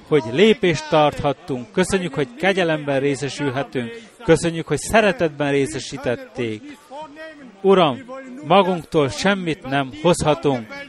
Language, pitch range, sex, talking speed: Hungarian, 140-210 Hz, male, 90 wpm